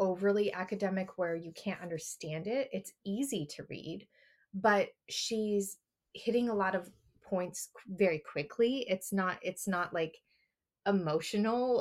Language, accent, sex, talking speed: English, American, female, 130 wpm